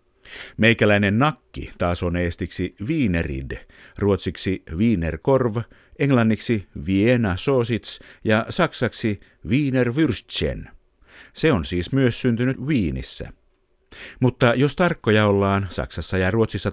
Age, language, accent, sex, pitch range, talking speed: 50-69, Finnish, native, male, 90-130 Hz, 100 wpm